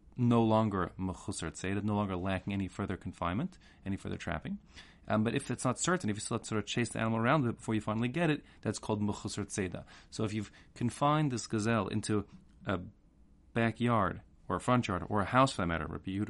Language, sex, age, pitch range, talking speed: English, male, 30-49, 95-110 Hz, 200 wpm